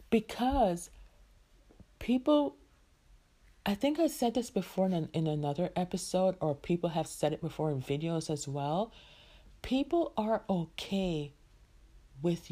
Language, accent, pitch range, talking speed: English, American, 150-220 Hz, 125 wpm